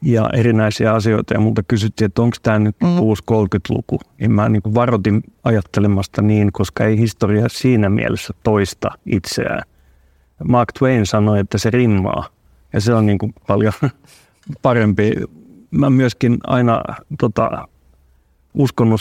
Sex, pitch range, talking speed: male, 105-120 Hz, 140 wpm